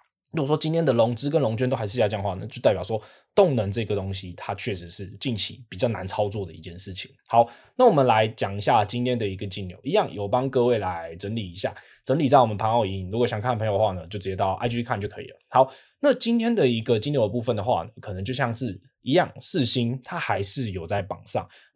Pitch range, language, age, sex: 100-135 Hz, Chinese, 20-39, male